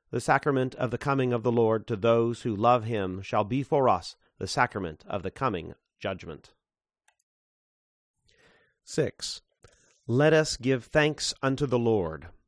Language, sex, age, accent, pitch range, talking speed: English, male, 40-59, American, 105-135 Hz, 150 wpm